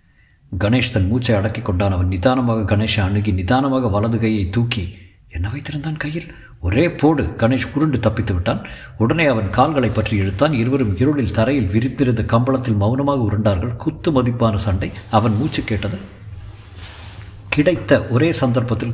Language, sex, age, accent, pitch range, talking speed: Tamil, male, 50-69, native, 105-130 Hz, 135 wpm